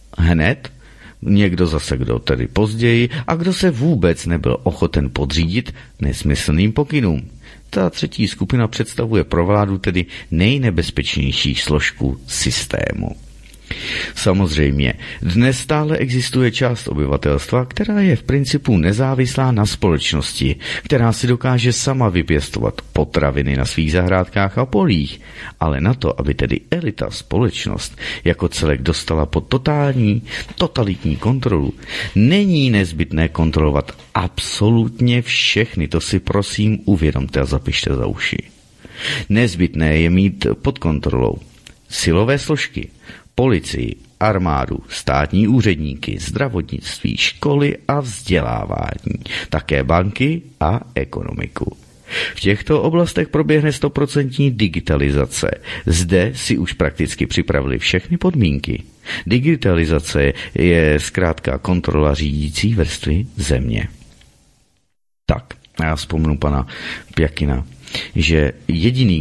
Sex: male